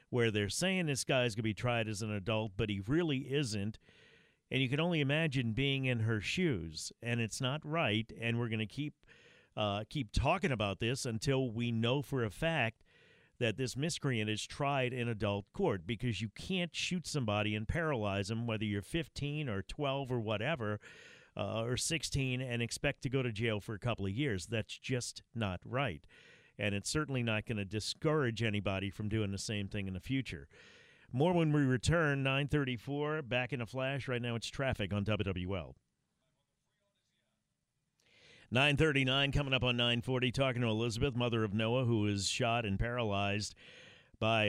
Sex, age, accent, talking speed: male, 50-69, American, 180 wpm